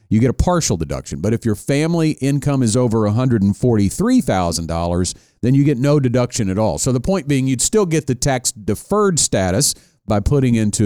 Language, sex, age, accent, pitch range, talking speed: English, male, 50-69, American, 100-140 Hz, 190 wpm